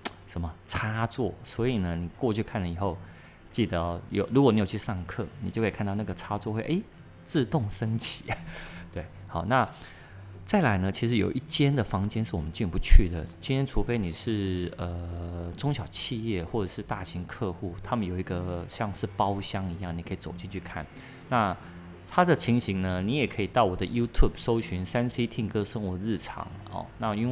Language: Chinese